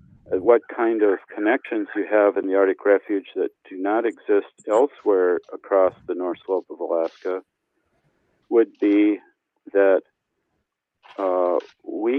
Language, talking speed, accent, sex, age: English, 130 wpm, American, male, 50-69